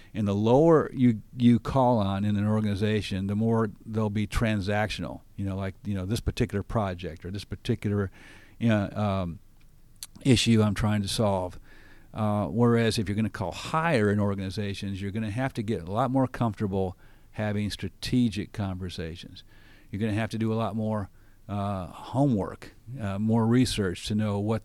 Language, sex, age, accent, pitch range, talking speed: English, male, 50-69, American, 100-115 Hz, 175 wpm